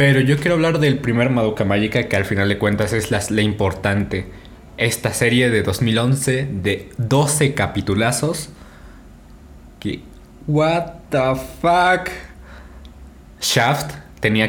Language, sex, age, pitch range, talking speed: Spanish, male, 20-39, 95-120 Hz, 125 wpm